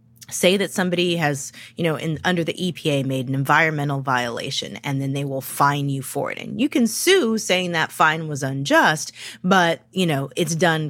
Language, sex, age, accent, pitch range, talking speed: English, female, 20-39, American, 140-180 Hz, 200 wpm